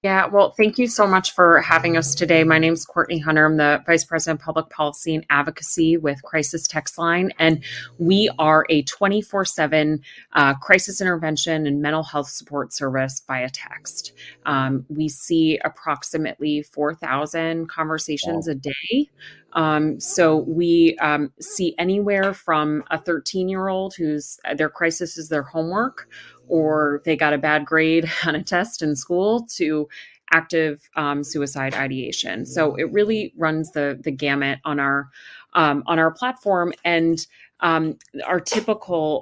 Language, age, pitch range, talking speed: English, 30-49, 145-170 Hz, 150 wpm